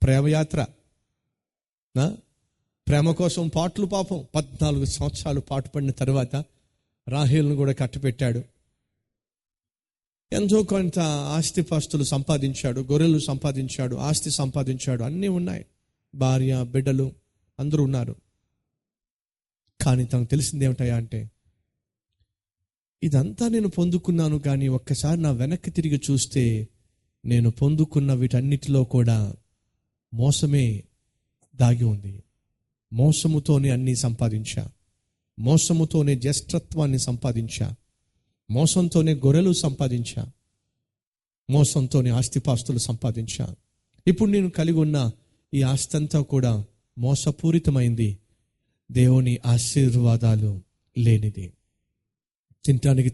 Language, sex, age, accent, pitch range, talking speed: Telugu, male, 30-49, native, 120-145 Hz, 80 wpm